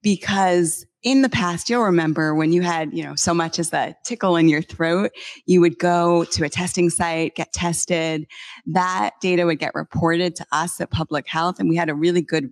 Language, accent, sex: English, American, female